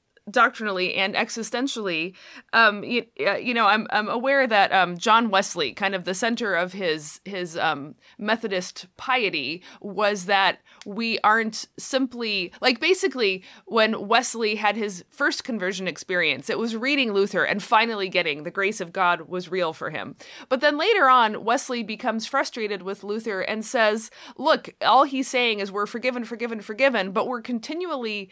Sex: female